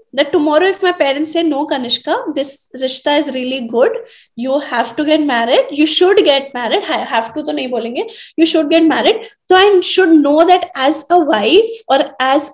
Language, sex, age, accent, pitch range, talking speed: Hindi, female, 20-39, native, 255-335 Hz, 200 wpm